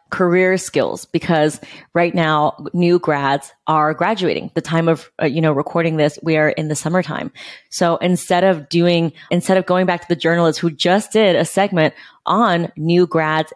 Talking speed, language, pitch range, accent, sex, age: 180 wpm, English, 155-185 Hz, American, female, 20-39